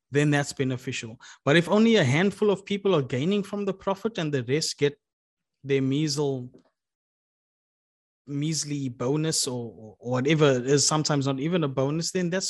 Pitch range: 135-170 Hz